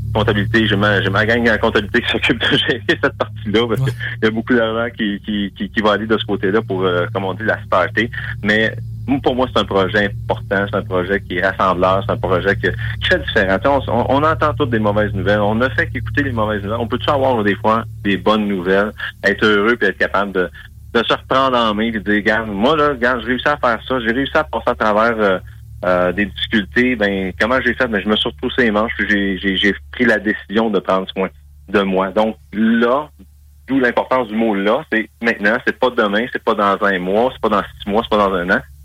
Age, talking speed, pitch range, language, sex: 30-49, 250 wpm, 95-115 Hz, French, male